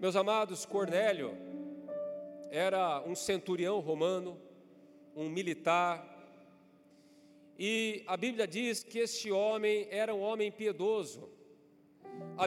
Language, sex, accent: Portuguese, male, Brazilian